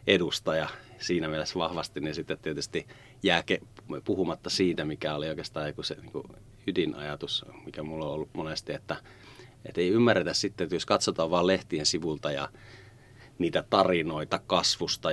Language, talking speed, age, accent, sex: Finnish, 145 wpm, 30-49, native, male